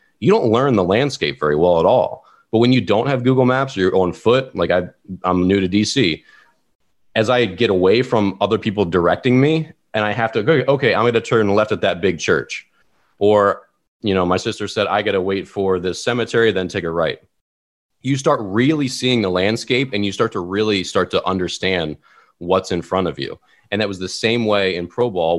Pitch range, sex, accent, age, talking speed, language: 95-120 Hz, male, American, 30-49, 225 wpm, English